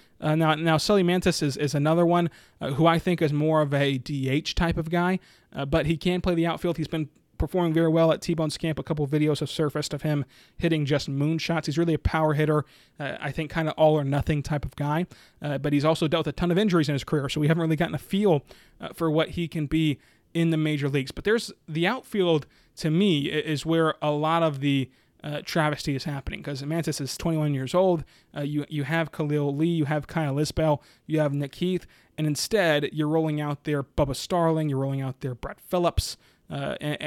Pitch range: 140-165 Hz